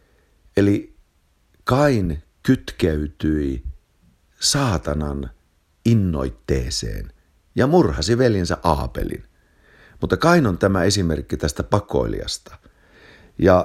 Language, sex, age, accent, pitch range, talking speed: Finnish, male, 50-69, native, 75-105 Hz, 75 wpm